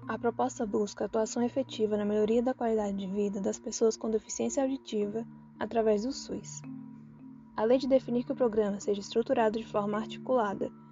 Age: 10-29